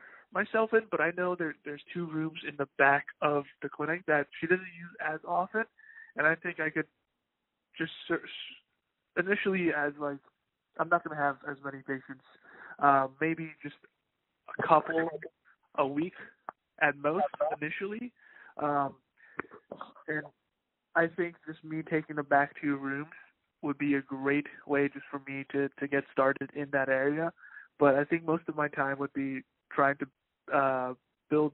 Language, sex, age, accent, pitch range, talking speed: English, male, 20-39, American, 140-165 Hz, 165 wpm